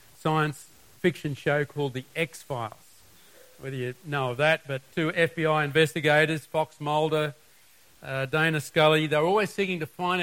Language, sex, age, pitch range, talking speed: English, male, 50-69, 130-170 Hz, 145 wpm